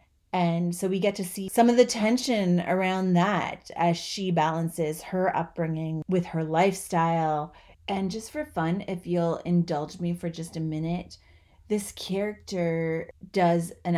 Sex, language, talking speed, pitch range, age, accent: female, English, 155 wpm, 165-200 Hz, 30-49, American